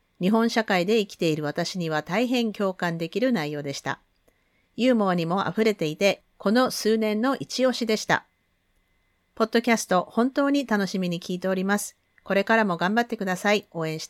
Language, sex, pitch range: Japanese, female, 170-235 Hz